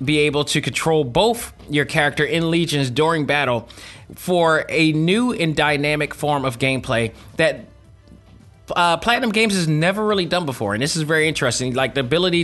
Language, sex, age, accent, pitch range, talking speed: English, male, 20-39, American, 130-160 Hz, 175 wpm